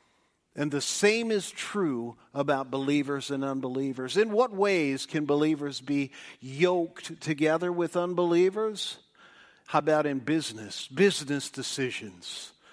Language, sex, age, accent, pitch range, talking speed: English, male, 50-69, American, 145-195 Hz, 120 wpm